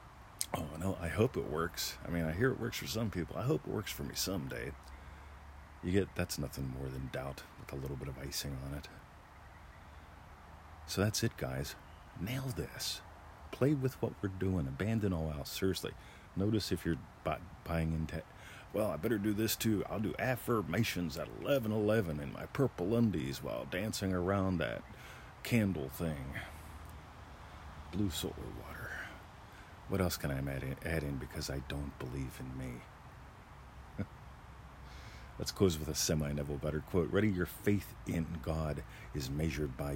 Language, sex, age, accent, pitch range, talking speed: English, male, 50-69, American, 75-100 Hz, 165 wpm